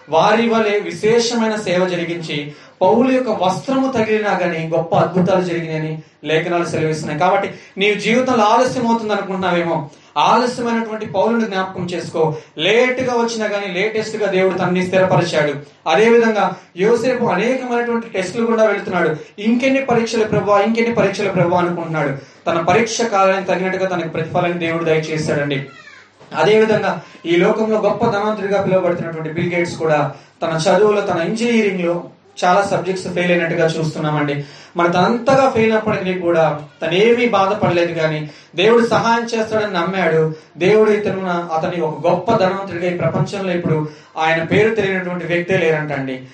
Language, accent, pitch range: Telugu, native, 170-220 Hz